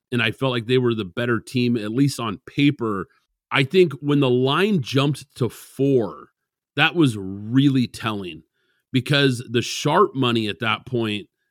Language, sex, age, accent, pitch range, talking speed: English, male, 40-59, American, 115-140 Hz, 165 wpm